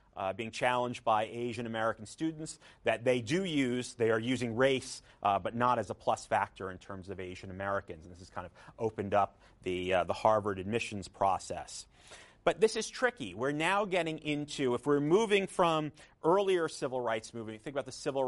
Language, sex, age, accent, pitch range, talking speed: English, male, 40-59, American, 110-145 Hz, 190 wpm